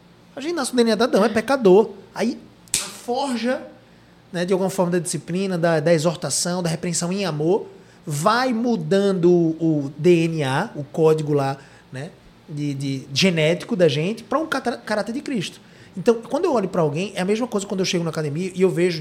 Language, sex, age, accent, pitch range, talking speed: Portuguese, male, 20-39, Brazilian, 150-215 Hz, 195 wpm